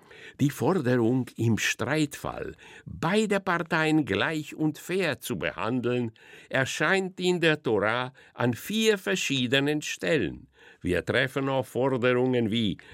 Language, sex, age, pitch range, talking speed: German, male, 60-79, 120-155 Hz, 110 wpm